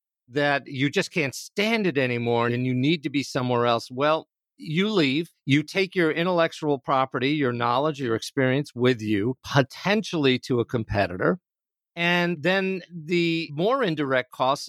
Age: 50-69